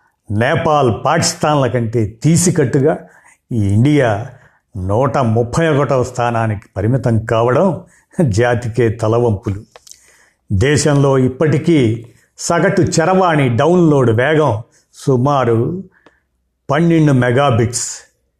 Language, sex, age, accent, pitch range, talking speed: Telugu, male, 50-69, native, 115-150 Hz, 75 wpm